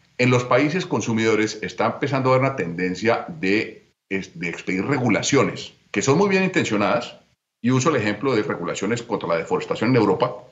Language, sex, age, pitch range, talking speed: Spanish, male, 40-59, 110-150 Hz, 170 wpm